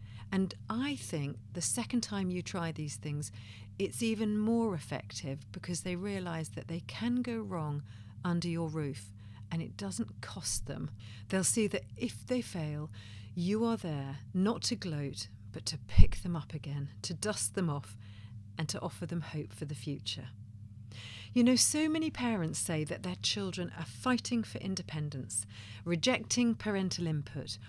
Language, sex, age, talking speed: English, female, 40-59, 165 wpm